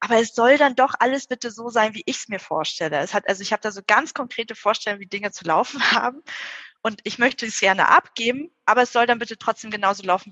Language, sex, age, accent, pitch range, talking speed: German, female, 20-39, German, 195-240 Hz, 250 wpm